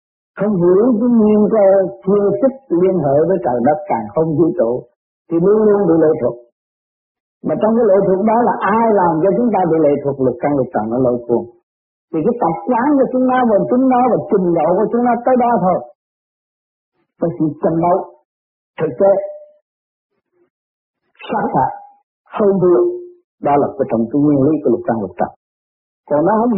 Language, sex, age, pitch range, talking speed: Vietnamese, male, 50-69, 150-235 Hz, 200 wpm